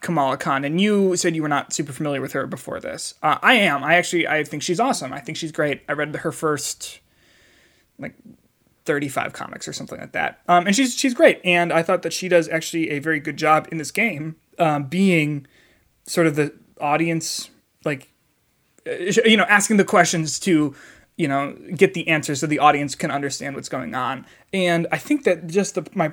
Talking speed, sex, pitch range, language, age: 205 wpm, male, 150-185 Hz, English, 20-39